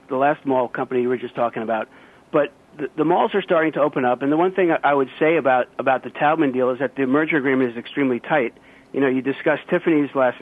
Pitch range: 125-150 Hz